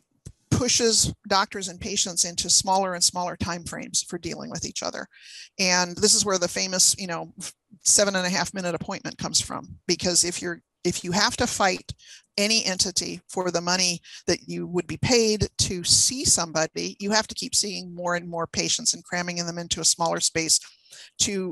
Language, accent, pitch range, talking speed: English, American, 175-200 Hz, 190 wpm